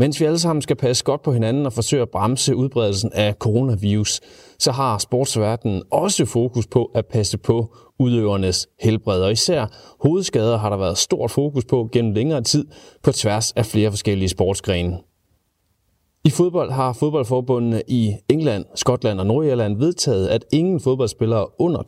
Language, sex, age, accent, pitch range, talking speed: Danish, male, 30-49, native, 105-140 Hz, 160 wpm